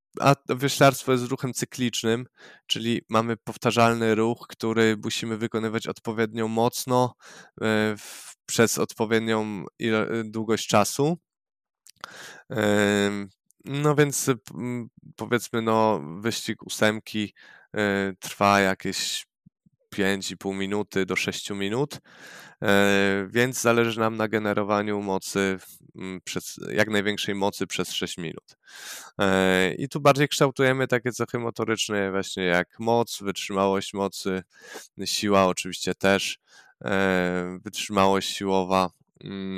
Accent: native